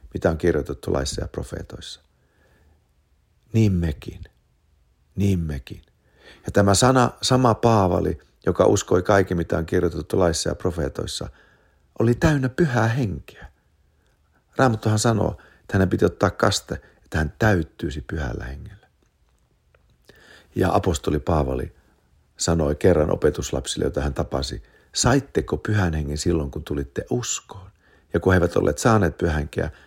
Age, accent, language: 50-69, Finnish, English